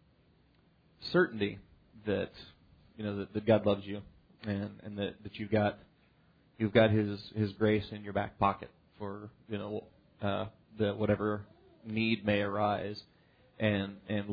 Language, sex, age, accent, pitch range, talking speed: English, male, 30-49, American, 100-110 Hz, 145 wpm